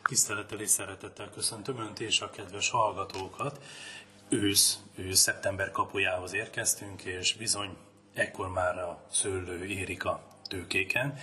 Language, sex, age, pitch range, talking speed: Hungarian, male, 30-49, 95-110 Hz, 120 wpm